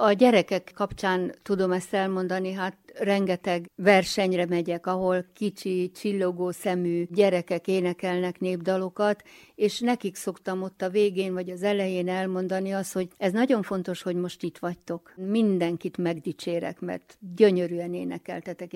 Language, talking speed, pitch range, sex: Hungarian, 130 wpm, 180-200 Hz, female